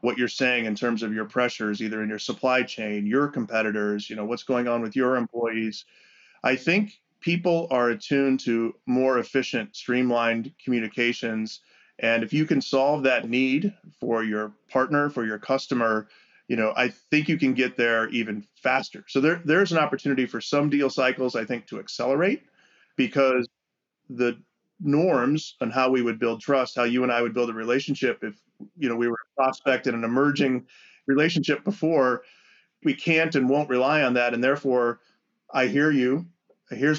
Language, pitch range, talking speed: English, 115-135 Hz, 180 wpm